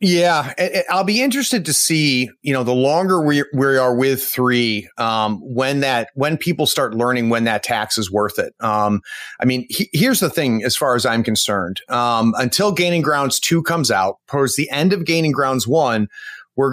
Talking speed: 205 wpm